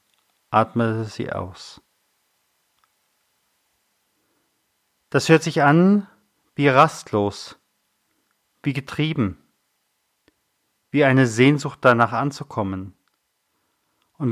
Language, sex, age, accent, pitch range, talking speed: German, male, 40-59, German, 110-150 Hz, 70 wpm